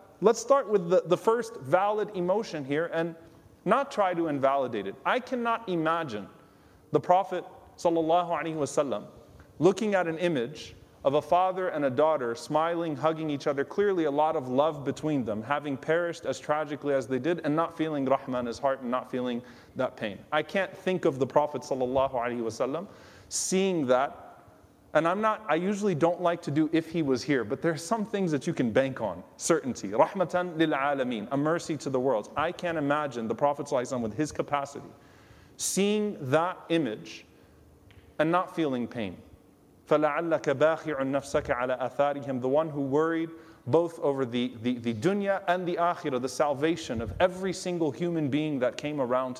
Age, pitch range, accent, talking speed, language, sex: 30-49, 135-180 Hz, American, 170 wpm, English, male